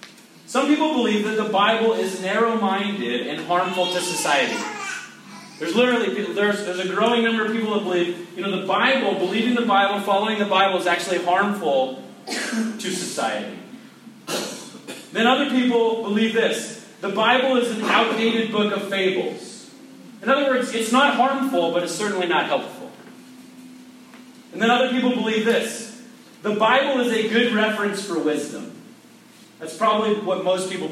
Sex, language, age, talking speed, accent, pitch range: male, English, 30-49, 155 wpm, American, 185-245 Hz